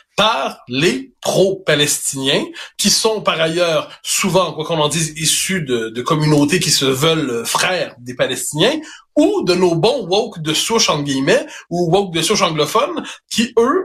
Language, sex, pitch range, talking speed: French, male, 155-215 Hz, 165 wpm